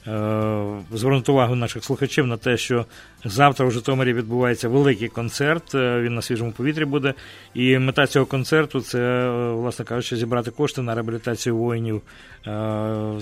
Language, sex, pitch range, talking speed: English, male, 115-135 Hz, 135 wpm